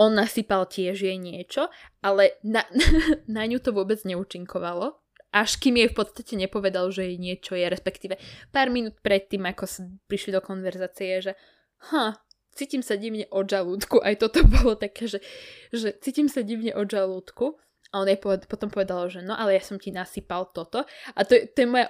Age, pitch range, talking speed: 10-29, 195-260 Hz, 185 wpm